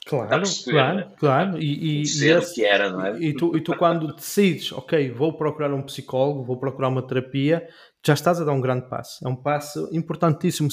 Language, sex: Portuguese, male